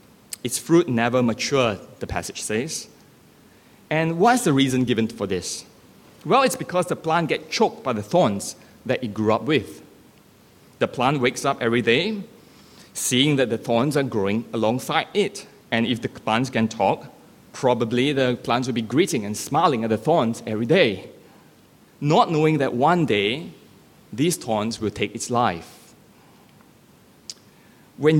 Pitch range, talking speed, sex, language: 115-150 Hz, 160 wpm, male, English